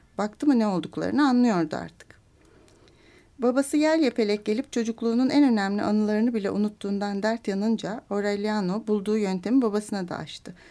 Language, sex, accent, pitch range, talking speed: Turkish, female, native, 200-240 Hz, 135 wpm